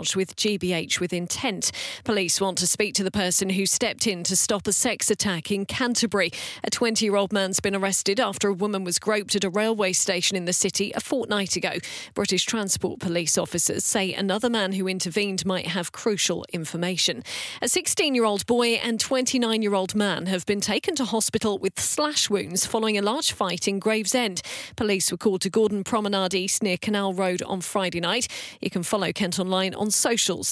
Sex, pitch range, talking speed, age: female, 185-220 Hz, 185 wpm, 40-59